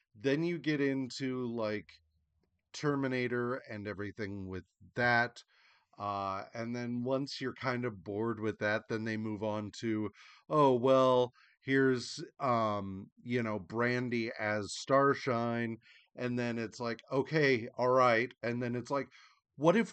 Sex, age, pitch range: male, 40-59, 115-155 Hz